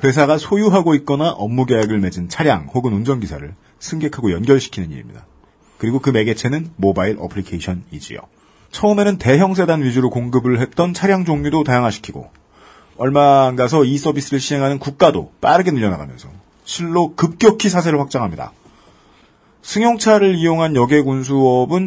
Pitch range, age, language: 120-165 Hz, 40-59, Korean